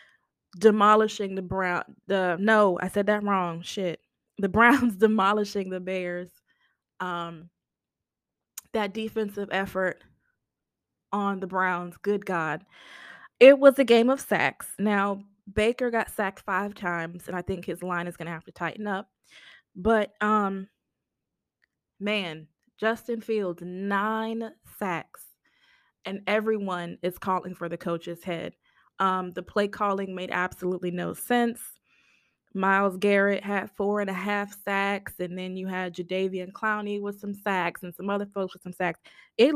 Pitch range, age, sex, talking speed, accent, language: 180-215 Hz, 20-39, female, 145 wpm, American, English